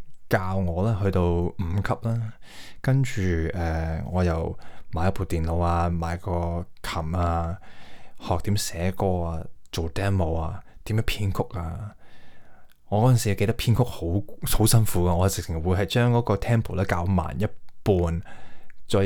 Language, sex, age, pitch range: Chinese, male, 20-39, 85-105 Hz